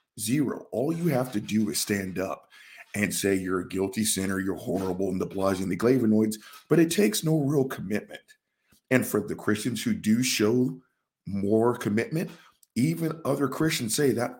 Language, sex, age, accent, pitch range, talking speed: English, male, 50-69, American, 105-135 Hz, 175 wpm